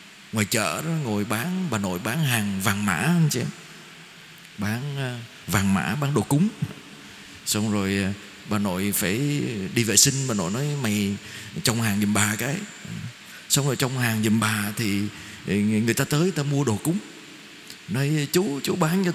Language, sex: Vietnamese, male